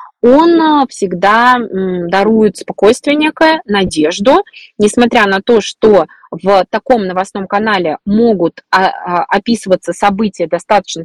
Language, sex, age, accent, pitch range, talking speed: Russian, female, 20-39, native, 190-245 Hz, 100 wpm